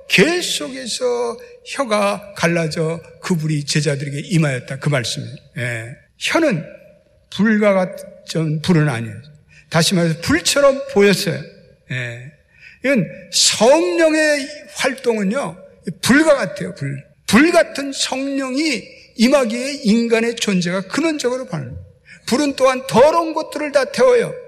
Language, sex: Korean, male